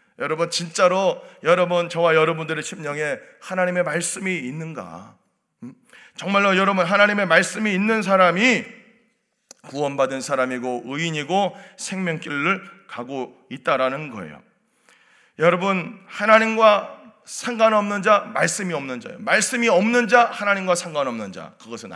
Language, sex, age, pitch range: Korean, male, 40-59, 155-225 Hz